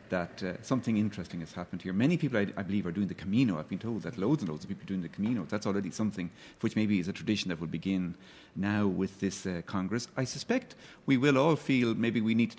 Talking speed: 260 wpm